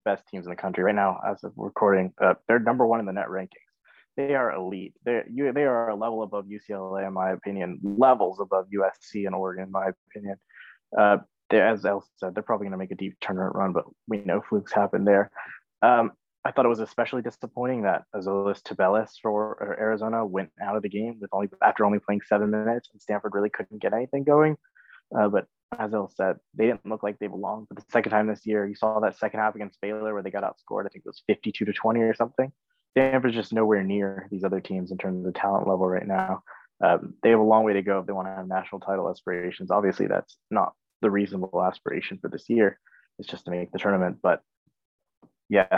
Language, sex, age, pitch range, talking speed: English, male, 20-39, 95-110 Hz, 230 wpm